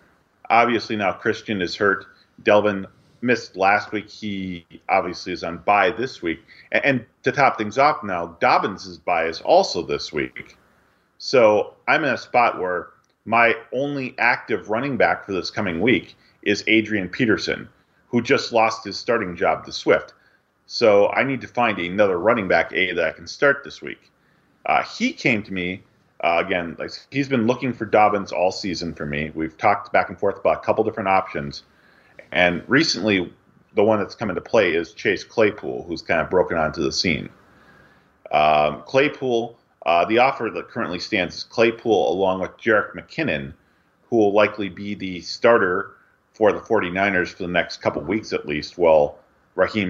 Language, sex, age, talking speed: English, male, 40-59, 180 wpm